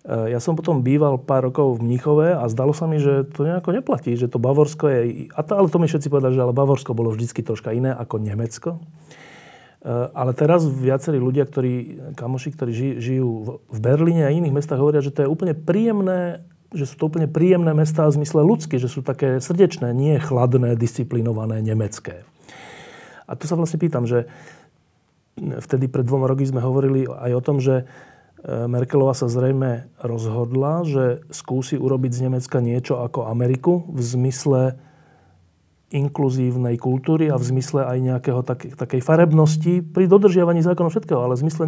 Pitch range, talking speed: 125-155 Hz, 165 wpm